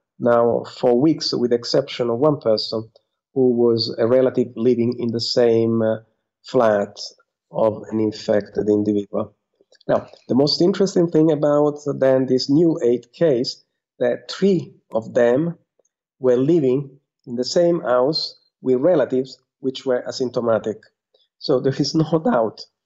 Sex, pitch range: male, 115-145 Hz